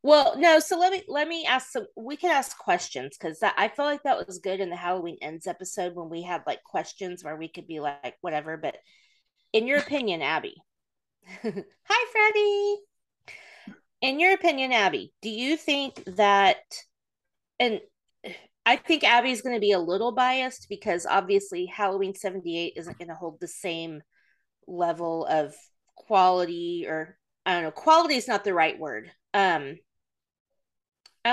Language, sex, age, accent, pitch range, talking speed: English, female, 30-49, American, 175-265 Hz, 165 wpm